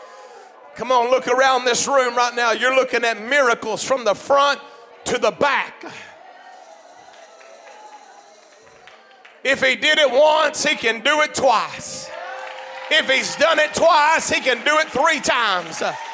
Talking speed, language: 145 wpm, English